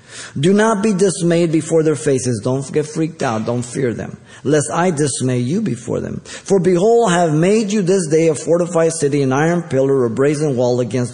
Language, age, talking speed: English, 50-69, 205 wpm